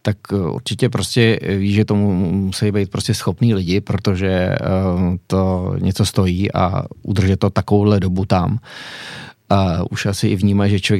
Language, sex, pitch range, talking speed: Czech, male, 95-115 Hz, 155 wpm